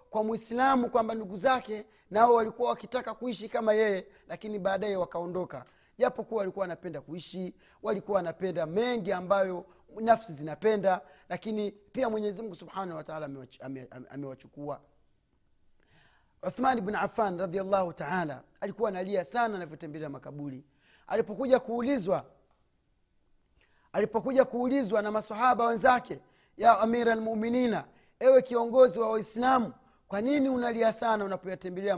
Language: Swahili